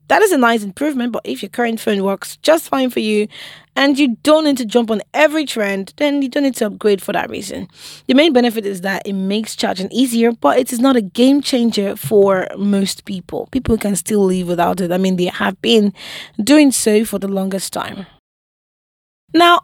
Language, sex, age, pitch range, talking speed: English, female, 20-39, 200-270 Hz, 215 wpm